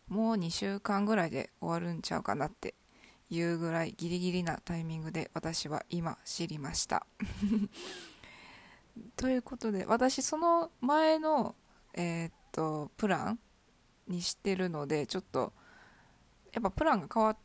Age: 20-39